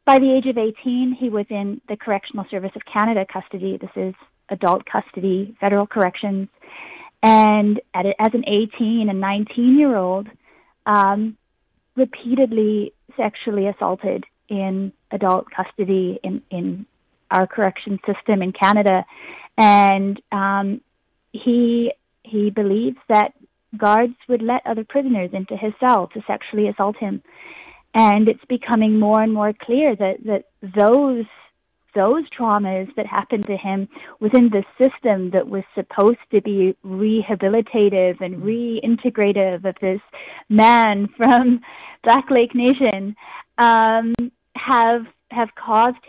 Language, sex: English, female